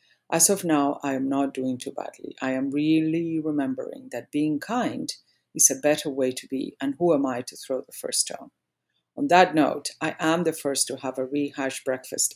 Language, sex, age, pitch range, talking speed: English, female, 50-69, 135-165 Hz, 210 wpm